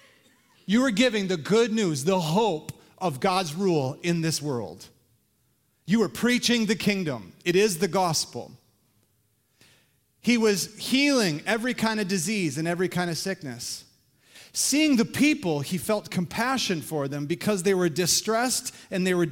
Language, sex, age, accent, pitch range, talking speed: English, male, 30-49, American, 140-205 Hz, 155 wpm